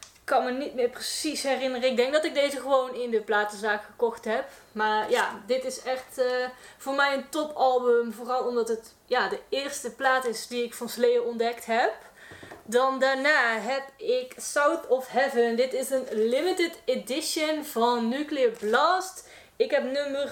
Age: 20-39